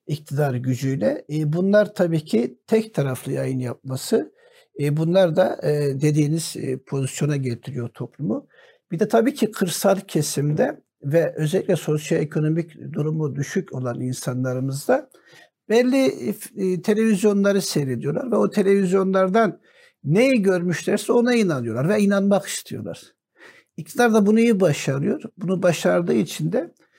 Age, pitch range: 60-79, 140-190 Hz